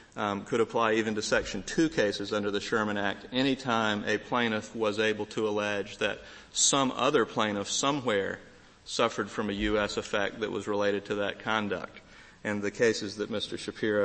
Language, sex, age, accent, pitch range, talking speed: English, male, 40-59, American, 100-115 Hz, 180 wpm